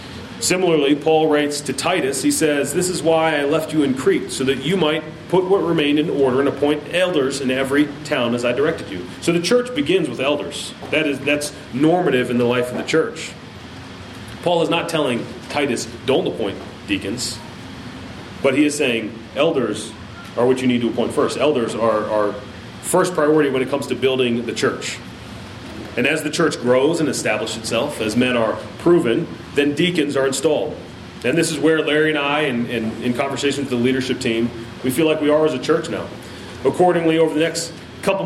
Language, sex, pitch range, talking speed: English, male, 115-155 Hz, 200 wpm